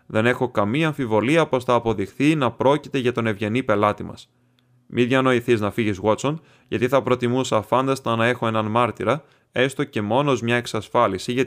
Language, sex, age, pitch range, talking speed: Greek, male, 20-39, 110-140 Hz, 175 wpm